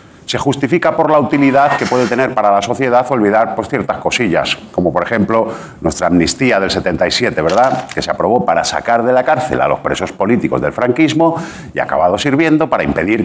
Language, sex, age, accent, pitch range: Japanese, male, 50-69, Spanish, 110-140 Hz